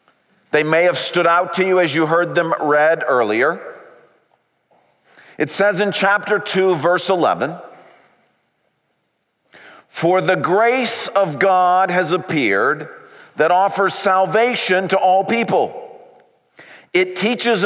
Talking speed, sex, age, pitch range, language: 120 wpm, male, 40-59, 175-220 Hz, English